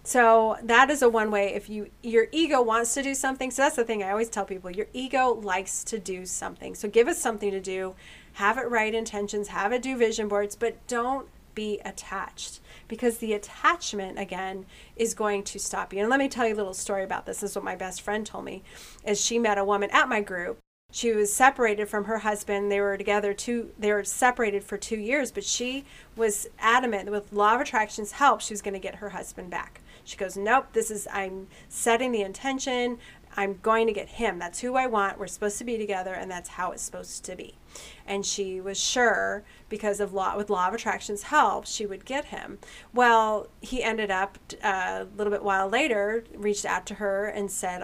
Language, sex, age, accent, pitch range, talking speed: English, female, 30-49, American, 200-235 Hz, 225 wpm